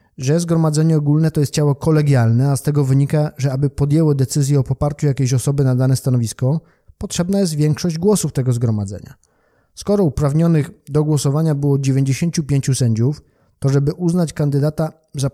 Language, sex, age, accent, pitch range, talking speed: Polish, male, 20-39, native, 135-150 Hz, 155 wpm